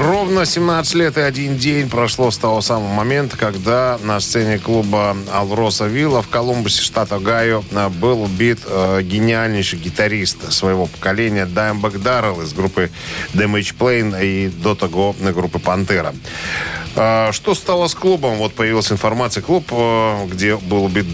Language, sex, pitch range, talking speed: Russian, male, 95-125 Hz, 140 wpm